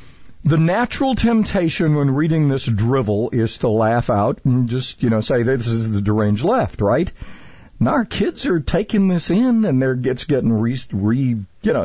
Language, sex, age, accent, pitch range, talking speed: English, male, 50-69, American, 105-140 Hz, 185 wpm